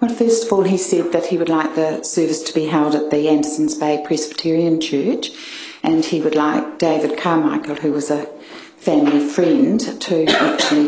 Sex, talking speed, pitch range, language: female, 190 wpm, 155-230 Hz, English